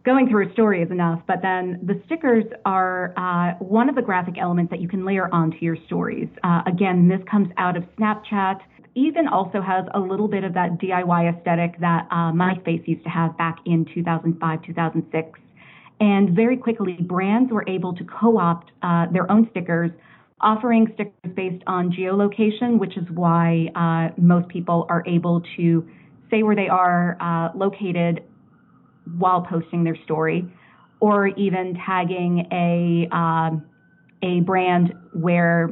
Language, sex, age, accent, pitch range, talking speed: English, female, 30-49, American, 170-205 Hz, 160 wpm